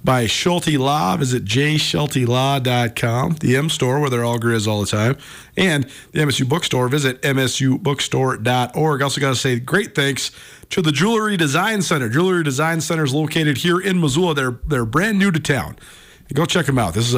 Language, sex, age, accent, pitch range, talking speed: English, male, 40-59, American, 120-160 Hz, 180 wpm